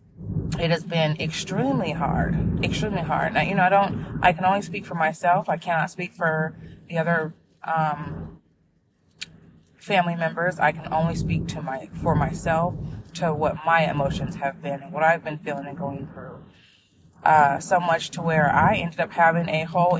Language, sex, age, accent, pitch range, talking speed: English, female, 20-39, American, 155-185 Hz, 180 wpm